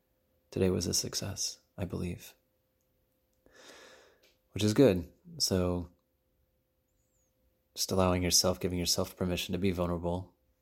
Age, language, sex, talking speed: 30-49, English, male, 105 wpm